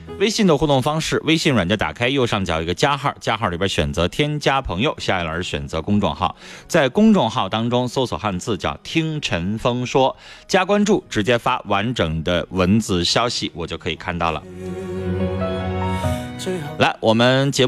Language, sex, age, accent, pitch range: Chinese, male, 30-49, native, 85-125 Hz